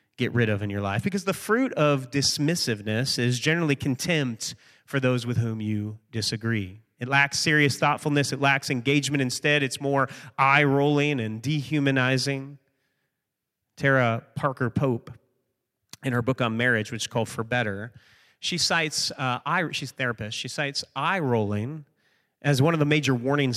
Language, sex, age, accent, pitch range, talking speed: English, male, 30-49, American, 120-155 Hz, 160 wpm